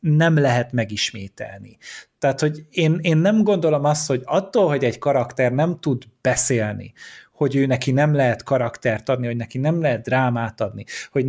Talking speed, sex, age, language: 170 wpm, male, 30-49, Hungarian